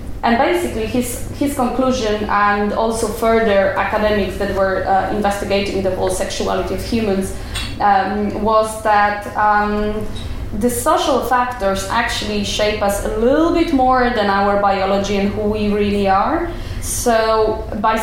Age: 20-39